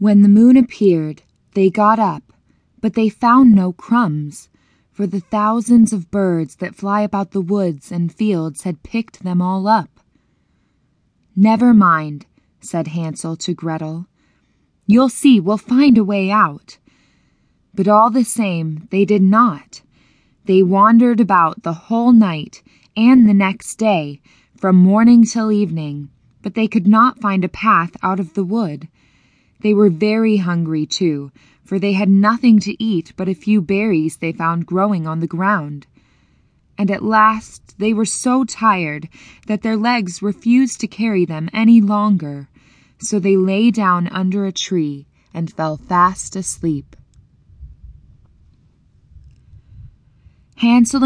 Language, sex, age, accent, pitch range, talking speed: English, female, 20-39, American, 165-215 Hz, 145 wpm